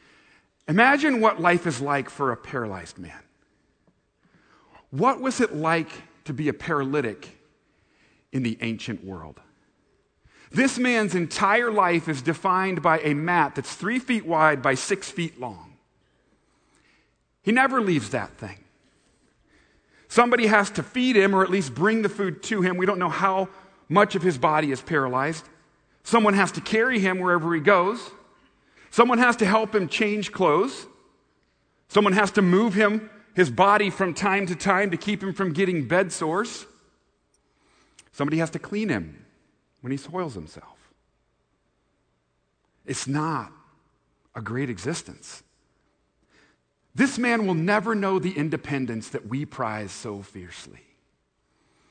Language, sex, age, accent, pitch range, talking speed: English, male, 40-59, American, 145-205 Hz, 145 wpm